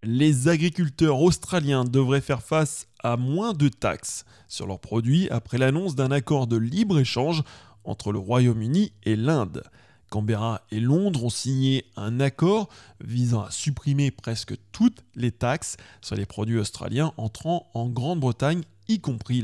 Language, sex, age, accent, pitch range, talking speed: English, male, 20-39, French, 115-150 Hz, 145 wpm